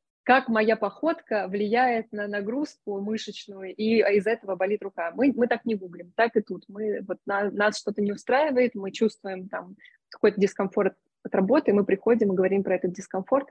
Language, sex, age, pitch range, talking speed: Russian, female, 20-39, 195-245 Hz, 180 wpm